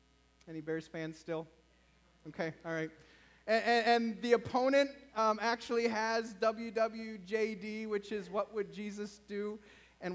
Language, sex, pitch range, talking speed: English, male, 165-250 Hz, 135 wpm